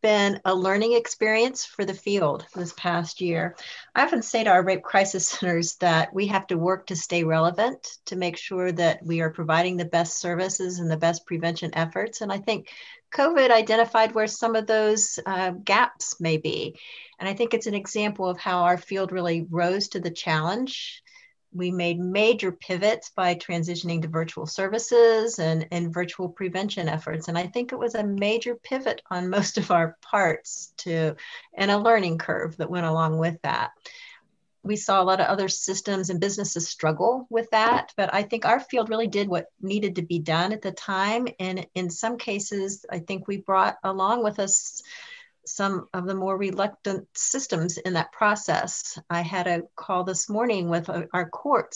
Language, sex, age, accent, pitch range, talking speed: English, female, 50-69, American, 170-215 Hz, 190 wpm